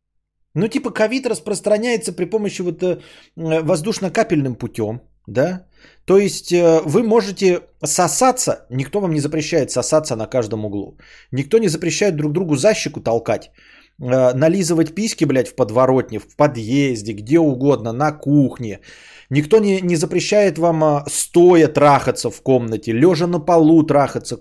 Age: 20-39